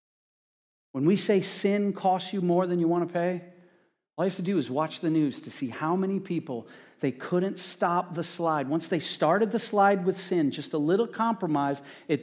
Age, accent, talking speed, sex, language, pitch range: 40-59, American, 210 wpm, male, English, 140-185 Hz